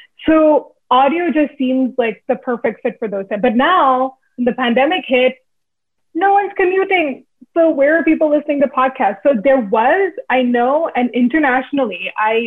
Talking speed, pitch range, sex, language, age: 165 wpm, 220-275 Hz, female, English, 20-39